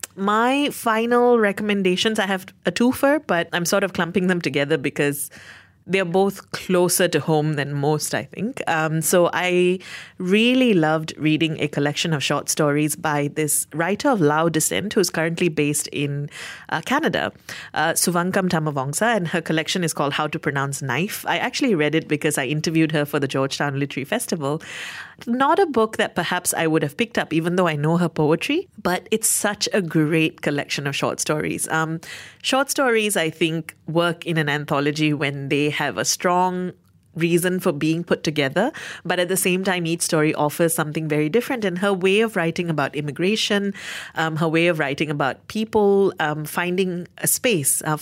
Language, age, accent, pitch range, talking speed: English, 30-49, Indian, 150-195 Hz, 180 wpm